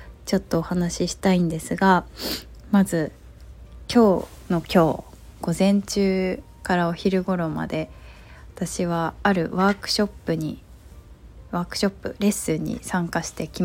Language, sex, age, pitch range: Japanese, female, 20-39, 145-190 Hz